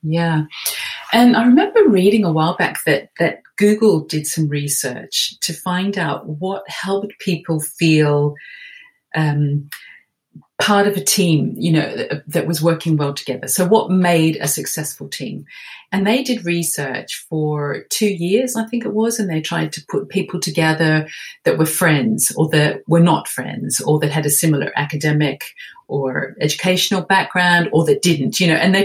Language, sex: English, female